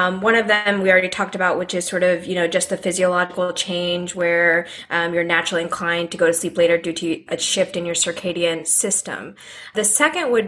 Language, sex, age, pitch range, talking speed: English, female, 20-39, 180-215 Hz, 225 wpm